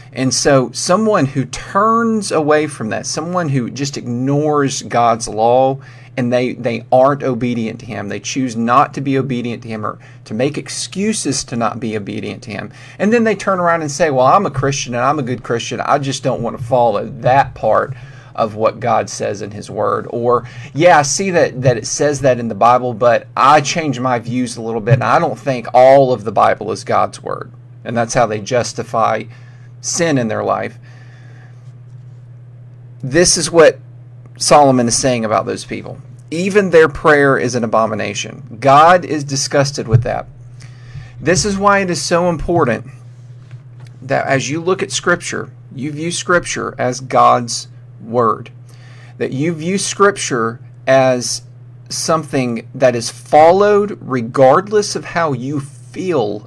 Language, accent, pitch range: English, American, 120-145 Hz